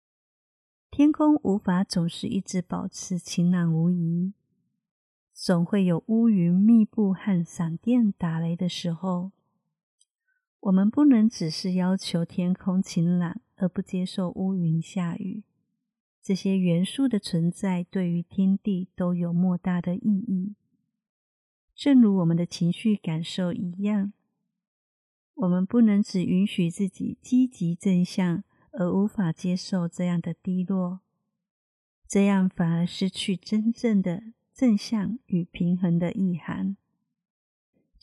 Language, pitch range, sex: Chinese, 175-210 Hz, female